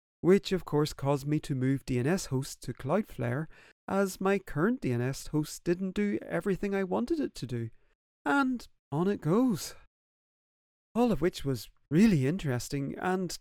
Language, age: English, 30-49